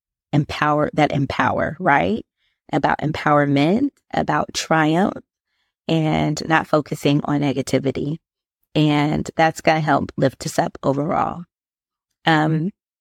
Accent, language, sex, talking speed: American, English, female, 105 wpm